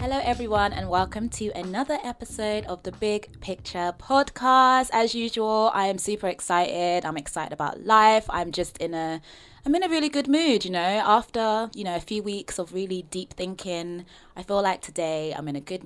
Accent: British